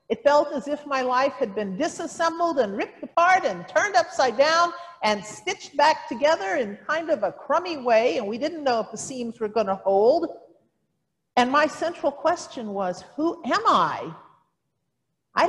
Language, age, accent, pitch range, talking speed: English, 50-69, American, 220-330 Hz, 180 wpm